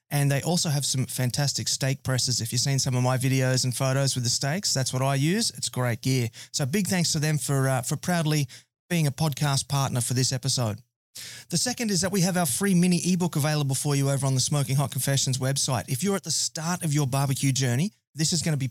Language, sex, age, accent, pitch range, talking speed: English, male, 30-49, Australian, 130-165 Hz, 245 wpm